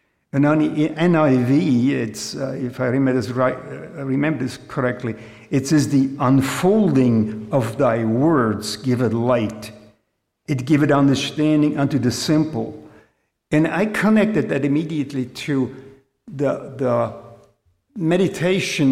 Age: 50-69